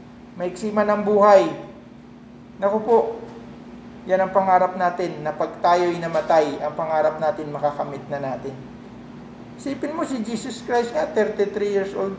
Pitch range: 165-225 Hz